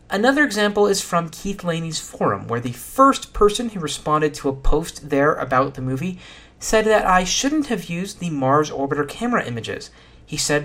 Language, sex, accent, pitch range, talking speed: English, male, American, 130-200 Hz, 185 wpm